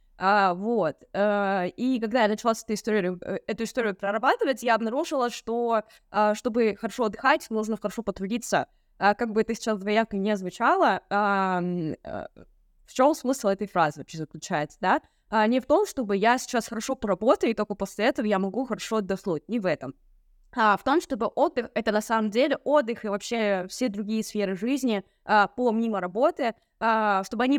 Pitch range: 200-245 Hz